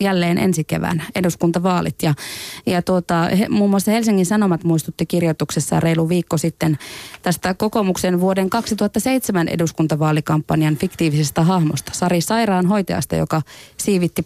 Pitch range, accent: 160-190 Hz, native